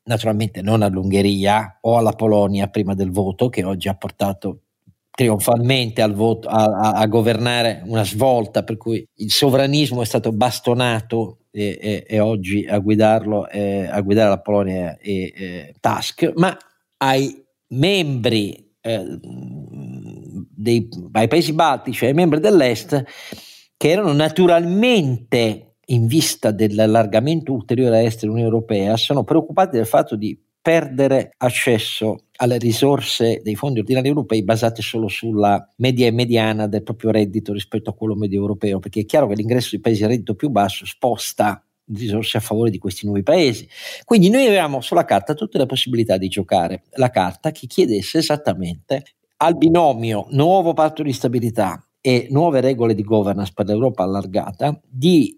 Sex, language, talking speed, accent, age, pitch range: male, Italian, 150 wpm, native, 50-69, 105-130 Hz